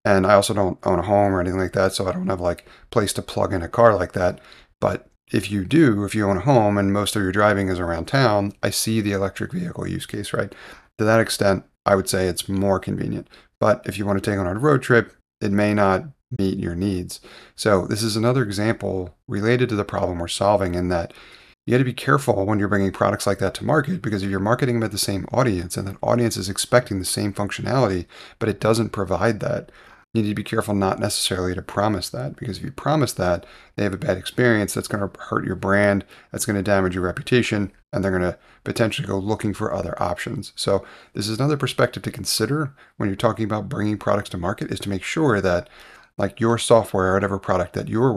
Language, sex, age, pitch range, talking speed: English, male, 30-49, 95-115 Hz, 235 wpm